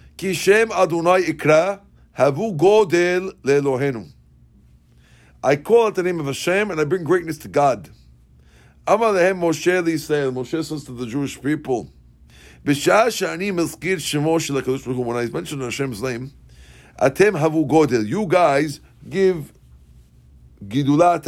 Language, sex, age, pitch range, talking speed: English, male, 50-69, 110-175 Hz, 80 wpm